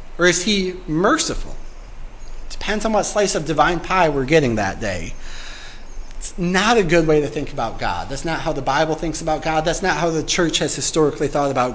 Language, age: English, 30-49